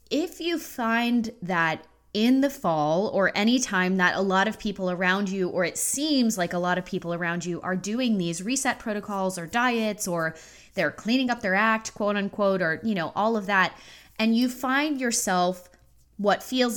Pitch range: 185-240 Hz